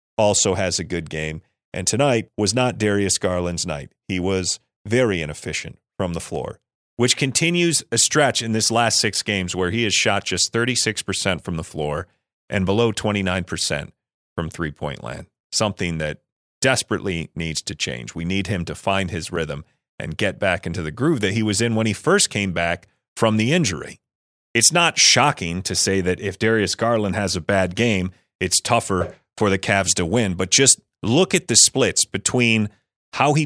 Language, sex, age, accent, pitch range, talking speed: English, male, 40-59, American, 90-115 Hz, 185 wpm